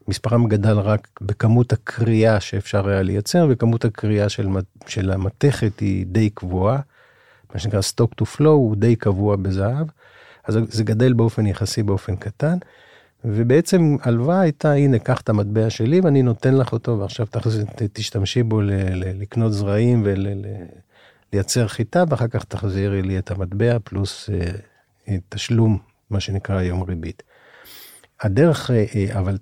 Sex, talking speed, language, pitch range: male, 140 wpm, Hebrew, 100-125 Hz